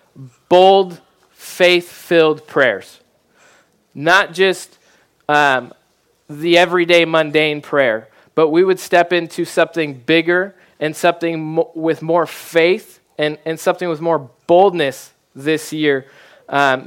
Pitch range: 145-175 Hz